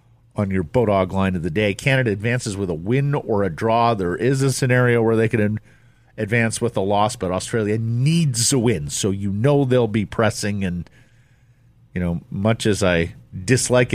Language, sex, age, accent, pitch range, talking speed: English, male, 50-69, American, 100-125 Hz, 190 wpm